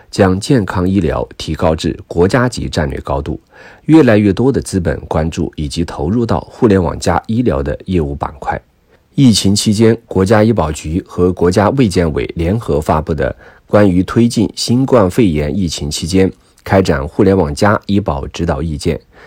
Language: Chinese